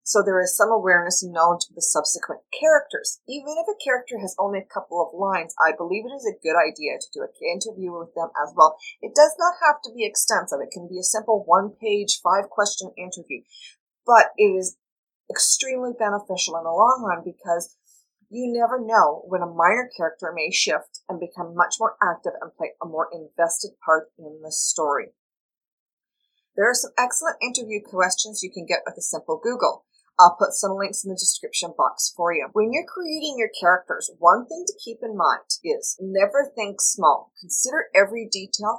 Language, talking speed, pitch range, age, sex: English, 190 wpm, 175-240 Hz, 30-49, female